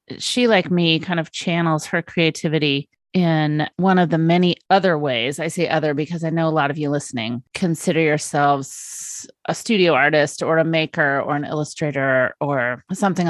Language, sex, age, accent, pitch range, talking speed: English, female, 30-49, American, 145-170 Hz, 175 wpm